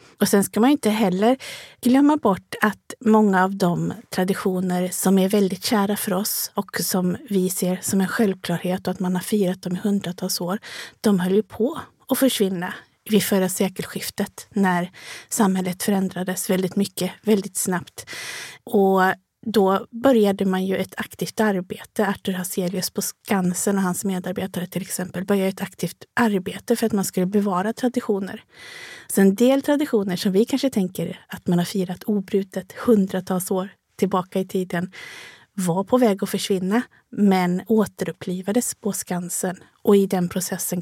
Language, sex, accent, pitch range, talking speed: Swedish, female, native, 185-215 Hz, 160 wpm